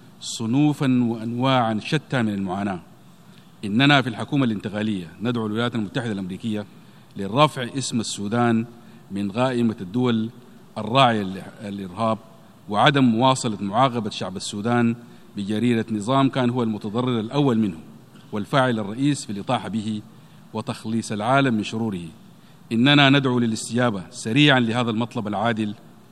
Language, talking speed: Arabic, 115 wpm